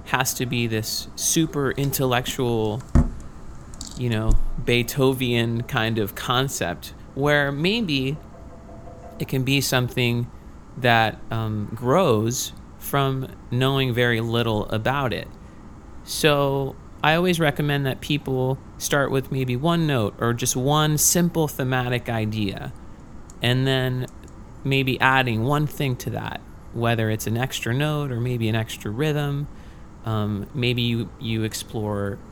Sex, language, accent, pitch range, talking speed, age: male, English, American, 110-140 Hz, 125 wpm, 30-49